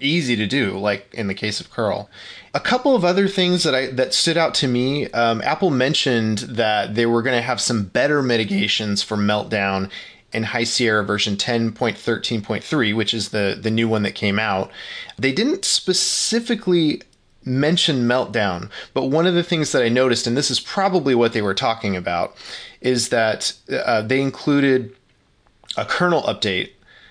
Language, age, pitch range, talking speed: English, 30-49, 105-135 Hz, 175 wpm